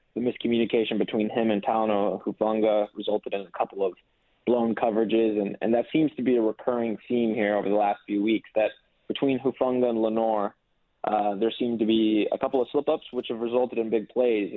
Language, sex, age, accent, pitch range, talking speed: English, male, 20-39, American, 105-120 Hz, 200 wpm